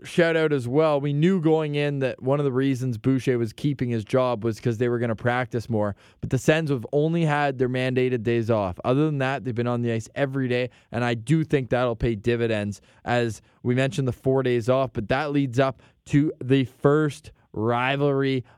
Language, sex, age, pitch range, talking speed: English, male, 20-39, 120-145 Hz, 220 wpm